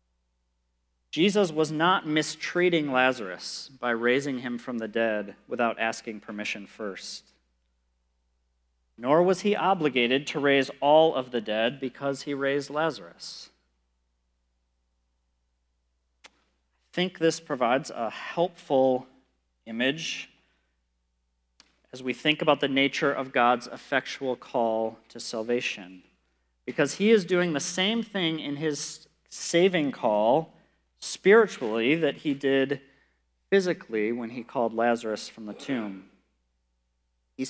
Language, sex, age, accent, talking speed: English, male, 40-59, American, 115 wpm